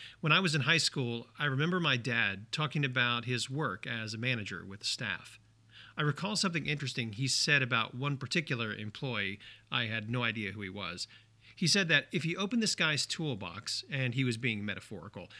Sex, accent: male, American